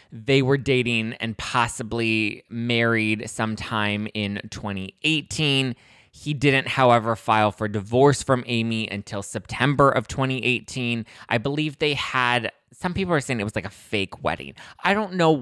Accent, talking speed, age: American, 150 wpm, 20-39